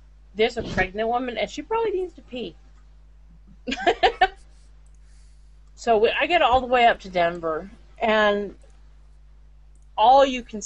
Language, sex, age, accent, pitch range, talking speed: English, female, 30-49, American, 165-220 Hz, 130 wpm